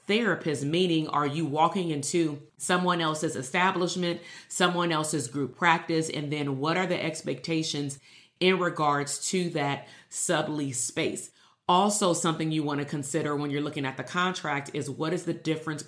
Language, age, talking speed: English, 30-49, 160 wpm